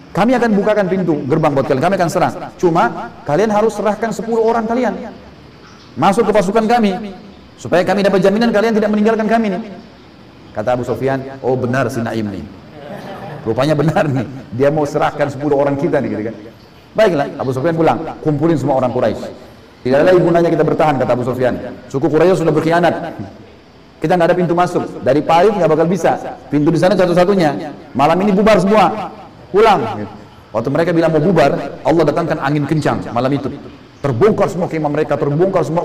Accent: native